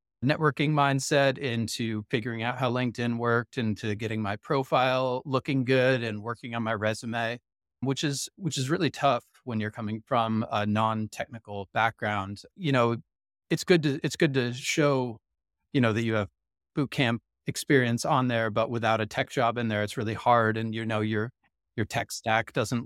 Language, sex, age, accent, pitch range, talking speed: English, male, 30-49, American, 110-130 Hz, 180 wpm